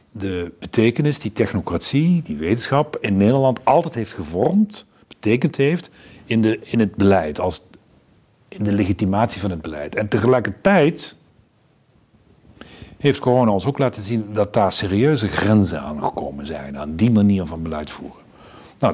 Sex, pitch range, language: male, 80-120 Hz, Dutch